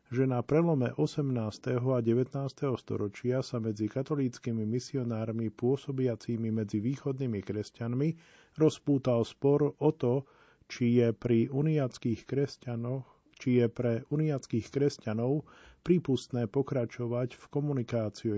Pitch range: 110-130 Hz